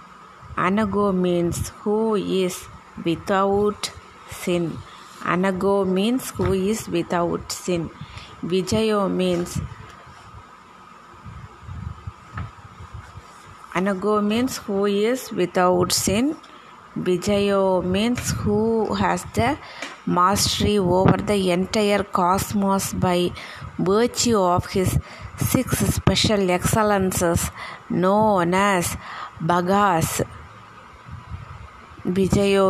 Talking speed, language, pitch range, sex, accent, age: 75 wpm, Tamil, 175-205 Hz, female, native, 30-49